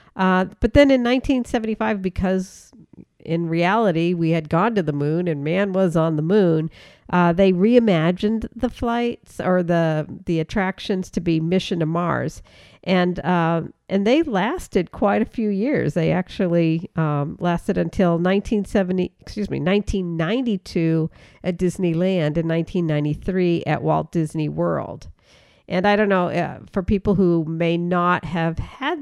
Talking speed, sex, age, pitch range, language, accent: 150 wpm, female, 50-69, 160-190 Hz, English, American